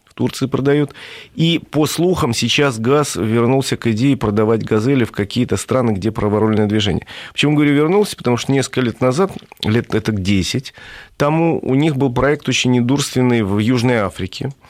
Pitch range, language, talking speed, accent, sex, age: 100-130 Hz, Russian, 165 wpm, native, male, 40-59